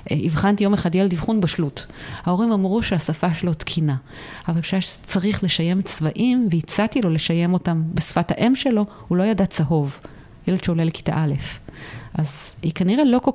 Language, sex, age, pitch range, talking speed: Hebrew, female, 30-49, 160-205 Hz, 160 wpm